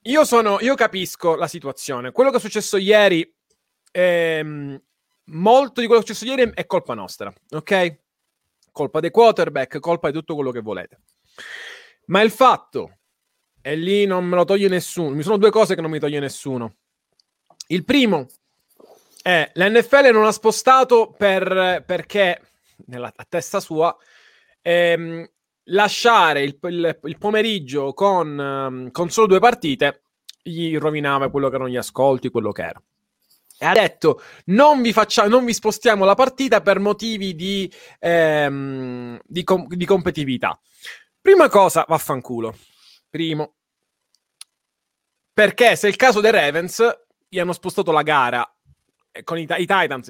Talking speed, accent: 150 wpm, Italian